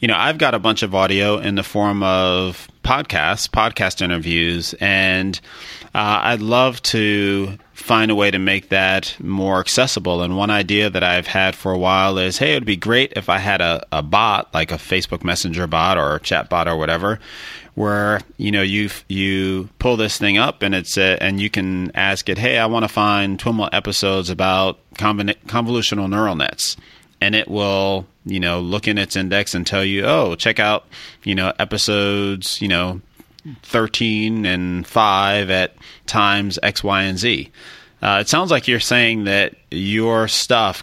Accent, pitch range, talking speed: American, 90-105 Hz, 185 wpm